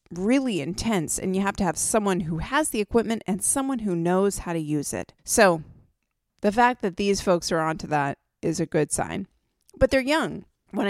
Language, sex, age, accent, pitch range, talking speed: English, female, 30-49, American, 165-205 Hz, 205 wpm